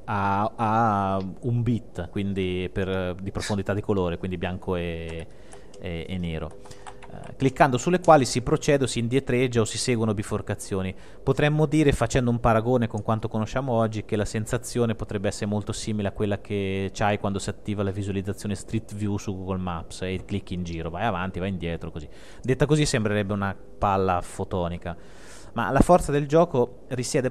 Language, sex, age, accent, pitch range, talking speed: Italian, male, 30-49, native, 100-130 Hz, 175 wpm